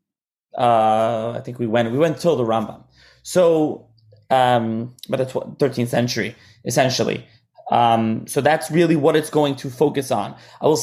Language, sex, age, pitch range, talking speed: English, male, 20-39, 125-165 Hz, 165 wpm